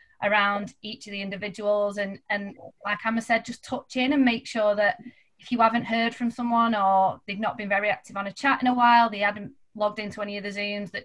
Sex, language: female, English